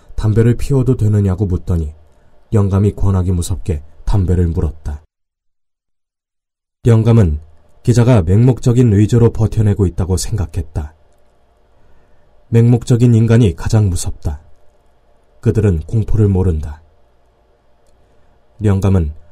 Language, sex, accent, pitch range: Korean, male, native, 85-115 Hz